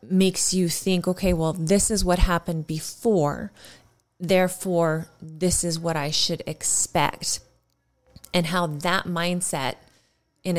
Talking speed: 125 wpm